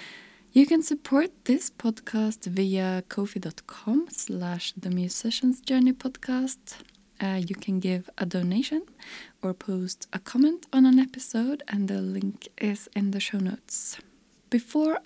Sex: female